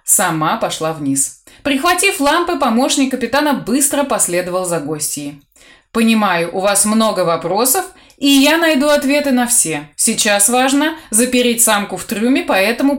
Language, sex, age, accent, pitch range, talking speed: Russian, female, 20-39, native, 200-285 Hz, 135 wpm